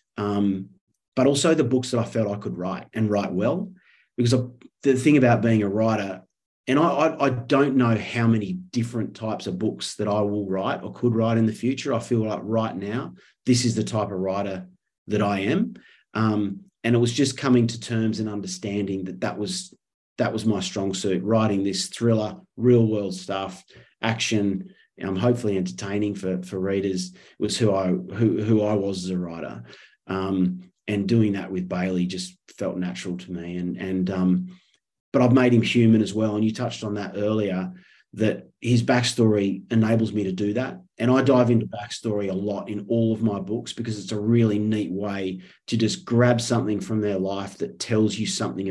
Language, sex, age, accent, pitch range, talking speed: English, male, 30-49, Australian, 95-115 Hz, 200 wpm